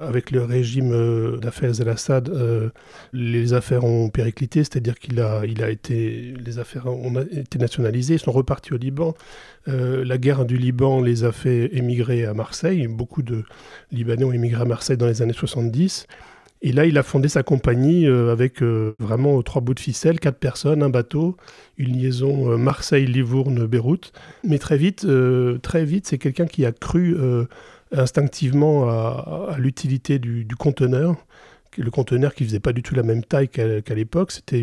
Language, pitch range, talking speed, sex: French, 120-145 Hz, 185 wpm, male